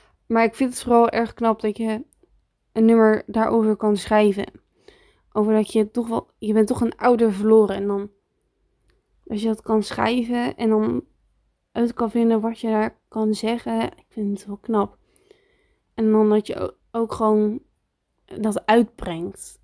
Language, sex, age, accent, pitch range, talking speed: Dutch, female, 20-39, Dutch, 210-230 Hz, 170 wpm